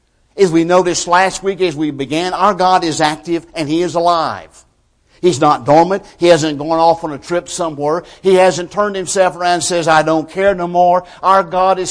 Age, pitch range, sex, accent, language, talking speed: 60-79, 145-180 Hz, male, American, English, 210 wpm